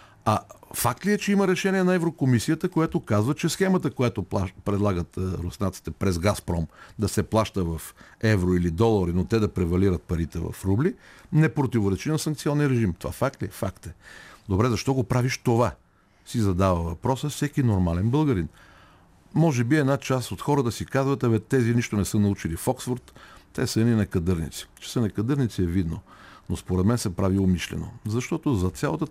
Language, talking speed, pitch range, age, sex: Bulgarian, 185 wpm, 95-145 Hz, 50-69, male